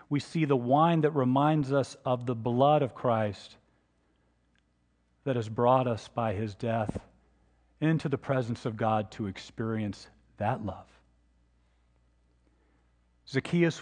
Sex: male